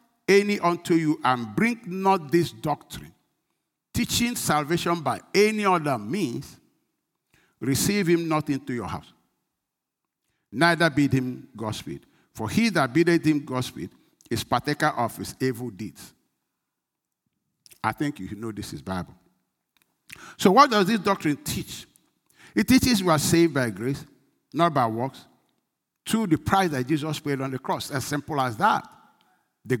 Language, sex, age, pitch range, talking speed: English, male, 50-69, 140-200 Hz, 150 wpm